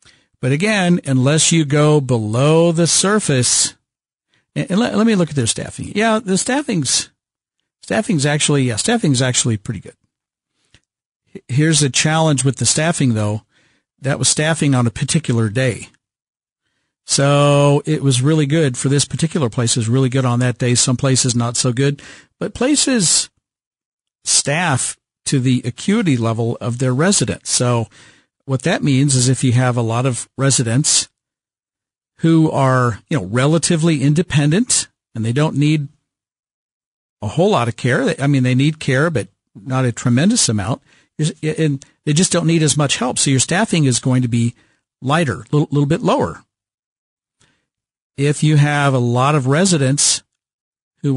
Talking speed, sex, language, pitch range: 160 wpm, male, English, 125-155 Hz